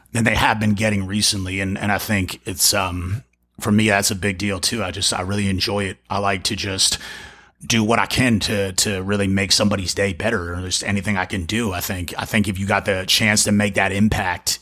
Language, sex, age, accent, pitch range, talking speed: English, male, 30-49, American, 100-110 Hz, 240 wpm